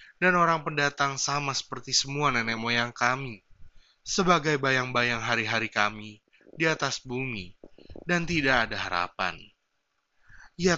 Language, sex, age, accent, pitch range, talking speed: Indonesian, male, 20-39, native, 110-140 Hz, 115 wpm